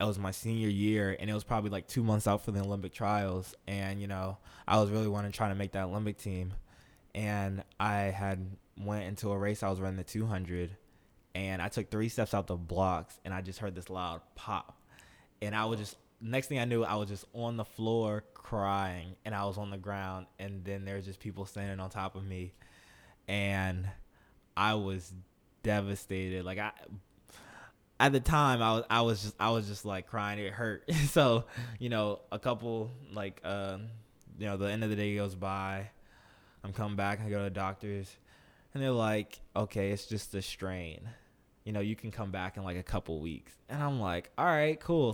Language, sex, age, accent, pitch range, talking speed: English, male, 20-39, American, 95-110 Hz, 210 wpm